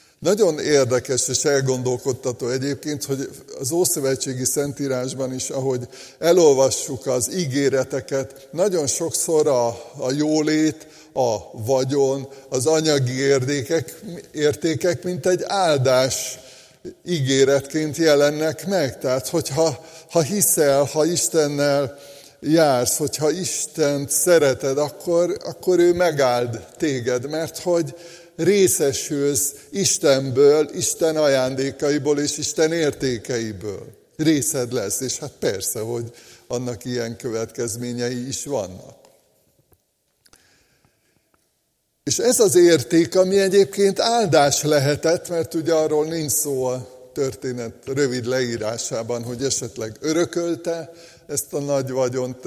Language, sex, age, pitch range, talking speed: Hungarian, male, 60-79, 130-160 Hz, 105 wpm